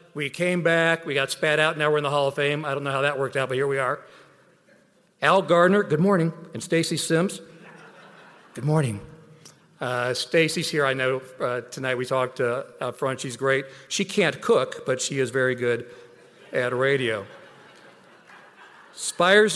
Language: English